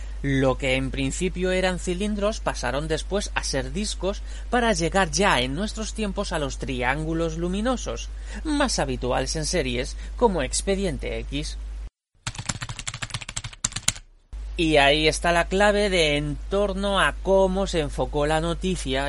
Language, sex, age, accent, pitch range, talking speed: Spanish, male, 30-49, Spanish, 125-185 Hz, 130 wpm